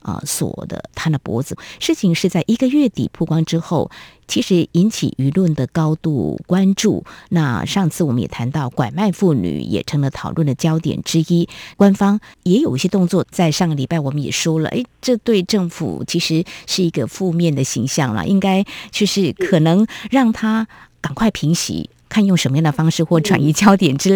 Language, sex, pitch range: Chinese, female, 155-205 Hz